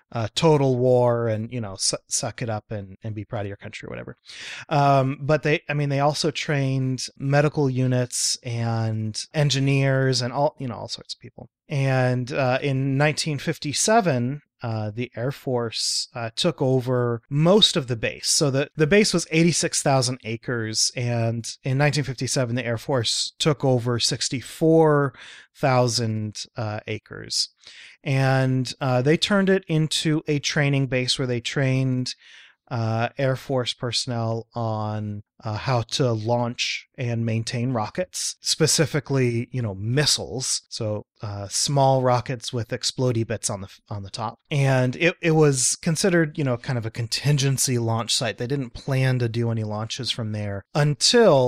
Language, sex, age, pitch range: English, male, 30-49, 115-145 Hz